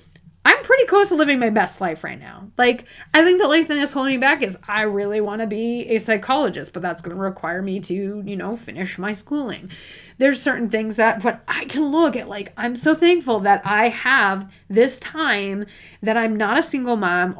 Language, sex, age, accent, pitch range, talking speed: English, female, 30-49, American, 195-265 Hz, 215 wpm